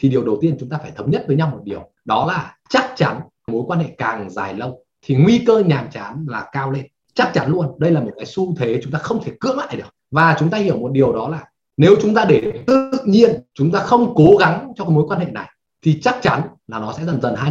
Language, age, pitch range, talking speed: Vietnamese, 20-39, 140-195 Hz, 275 wpm